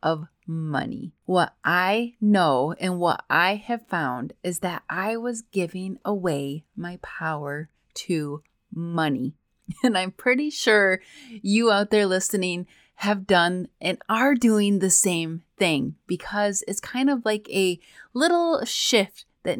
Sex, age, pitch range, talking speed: female, 30-49, 170-215 Hz, 140 wpm